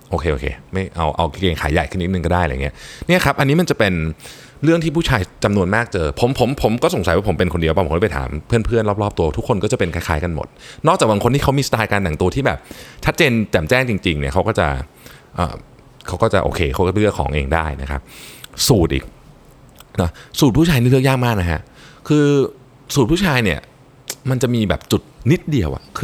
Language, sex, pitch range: Thai, male, 80-130 Hz